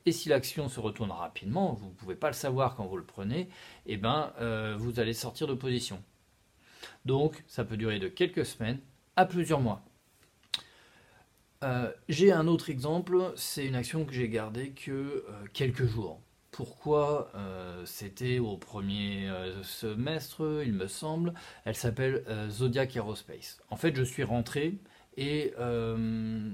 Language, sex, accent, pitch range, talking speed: French, male, French, 110-140 Hz, 160 wpm